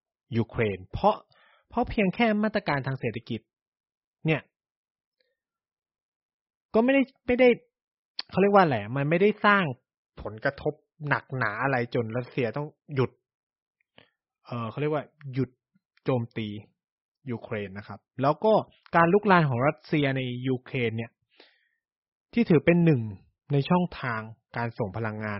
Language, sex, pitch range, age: Thai, male, 115-155 Hz, 20-39